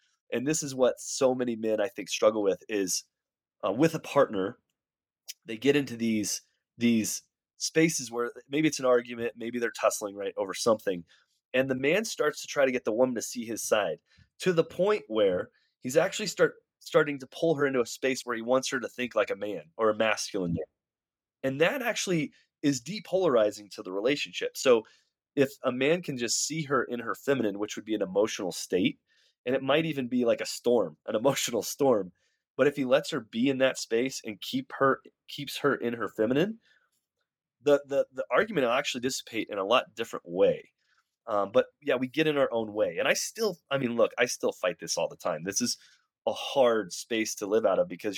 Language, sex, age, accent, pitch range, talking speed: English, male, 30-49, American, 115-155 Hz, 215 wpm